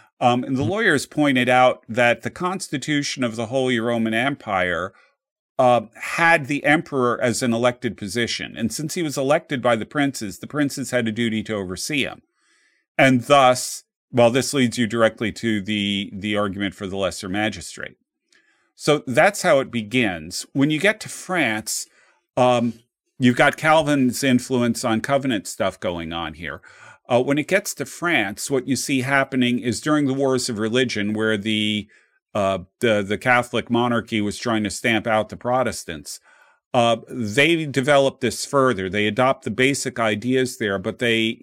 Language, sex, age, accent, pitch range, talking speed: English, male, 40-59, American, 110-135 Hz, 170 wpm